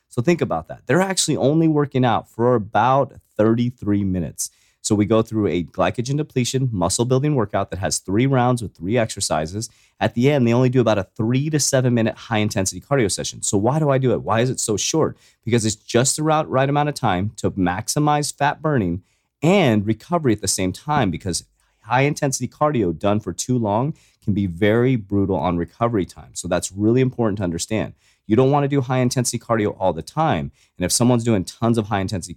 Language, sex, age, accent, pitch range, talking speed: English, male, 30-49, American, 100-130 Hz, 210 wpm